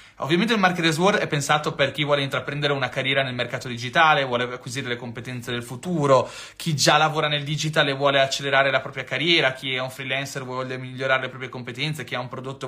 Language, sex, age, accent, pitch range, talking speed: Italian, male, 30-49, native, 135-180 Hz, 220 wpm